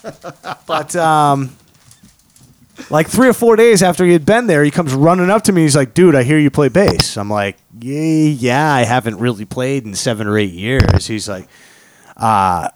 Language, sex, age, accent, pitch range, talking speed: English, male, 30-49, American, 105-150 Hz, 200 wpm